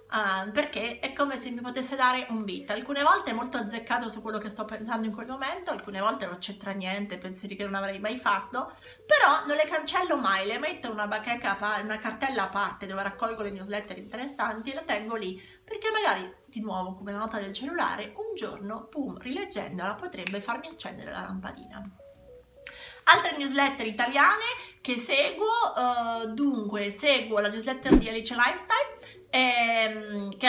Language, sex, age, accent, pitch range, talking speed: Italian, female, 30-49, native, 210-280 Hz, 175 wpm